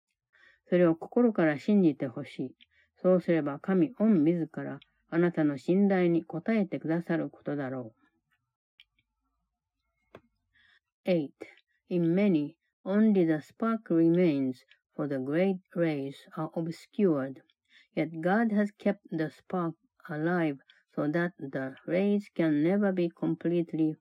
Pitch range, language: 155-190 Hz, Japanese